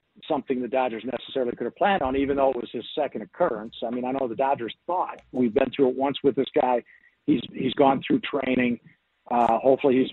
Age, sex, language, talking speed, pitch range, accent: 50-69, male, English, 225 wpm, 120-150 Hz, American